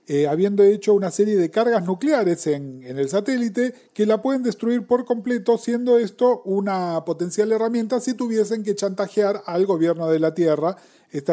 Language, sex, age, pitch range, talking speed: Spanish, male, 40-59, 160-235 Hz, 175 wpm